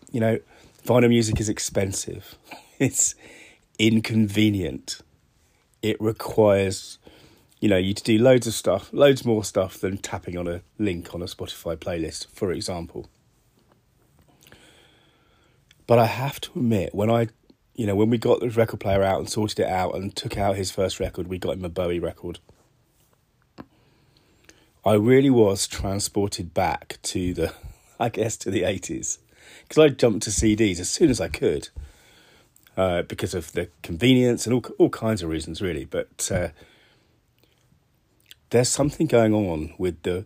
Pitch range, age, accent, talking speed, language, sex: 90-115 Hz, 30-49, British, 160 wpm, English, male